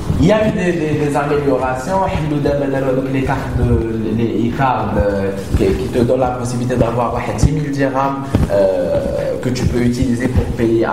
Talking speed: 165 wpm